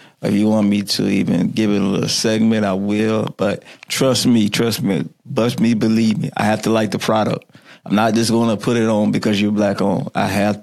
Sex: male